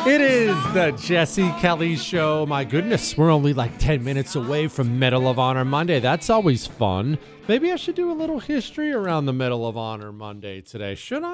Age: 40-59